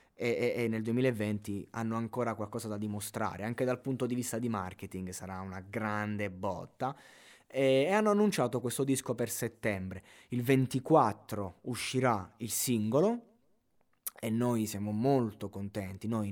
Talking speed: 145 wpm